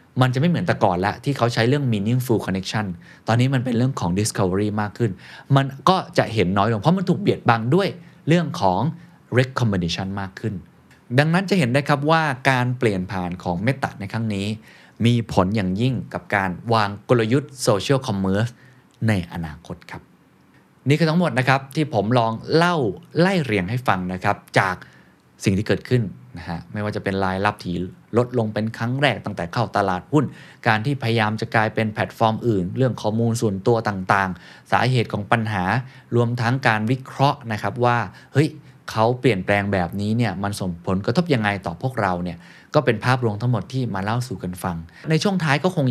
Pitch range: 100-135 Hz